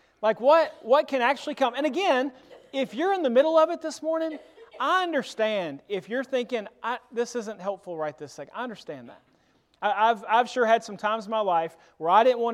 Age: 30-49